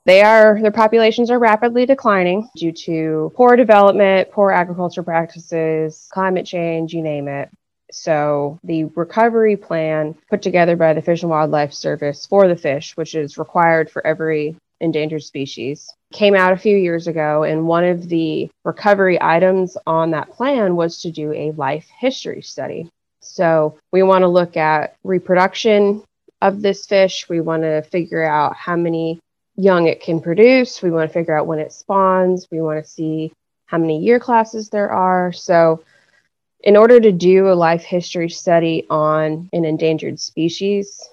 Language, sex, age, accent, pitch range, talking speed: English, female, 20-39, American, 155-190 Hz, 170 wpm